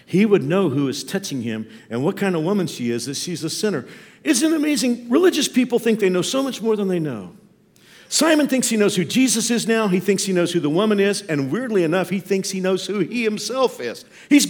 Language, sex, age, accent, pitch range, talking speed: English, male, 50-69, American, 135-215 Hz, 250 wpm